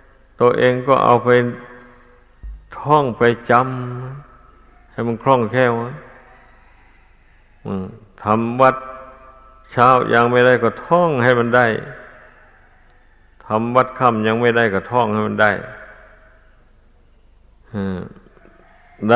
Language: Thai